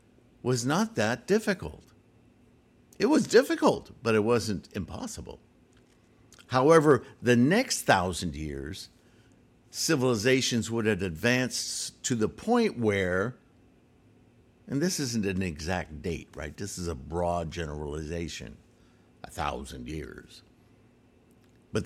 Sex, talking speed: male, 110 wpm